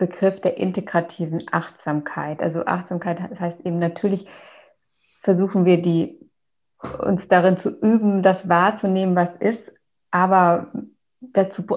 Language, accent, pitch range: German, German, 175-195 Hz